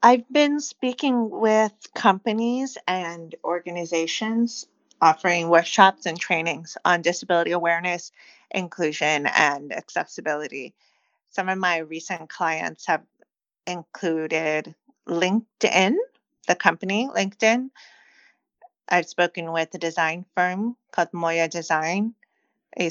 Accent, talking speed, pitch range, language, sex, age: American, 100 wpm, 165-205 Hz, English, female, 30-49